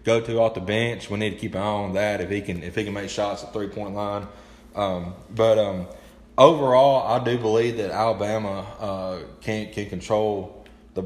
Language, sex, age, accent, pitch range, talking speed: English, male, 20-39, American, 100-115 Hz, 210 wpm